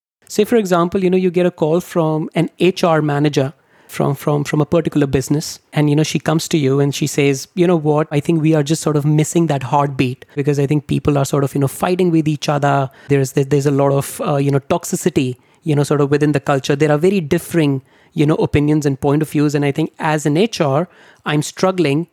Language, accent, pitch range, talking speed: English, Indian, 145-175 Hz, 240 wpm